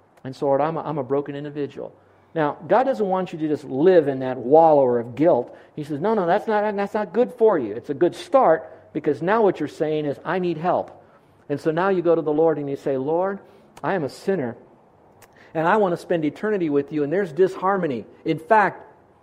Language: English